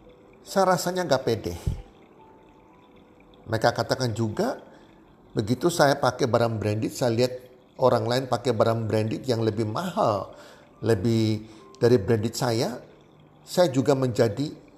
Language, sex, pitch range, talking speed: Indonesian, male, 110-140 Hz, 120 wpm